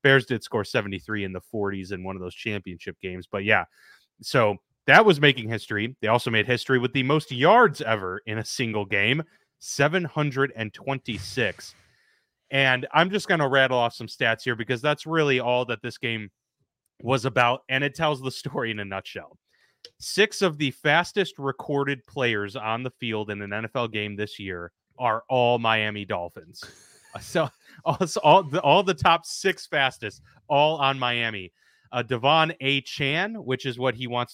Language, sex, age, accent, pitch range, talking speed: English, male, 30-49, American, 115-145 Hz, 175 wpm